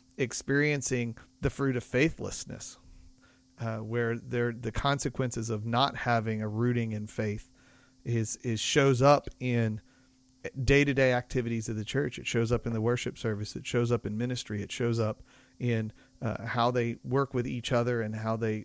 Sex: male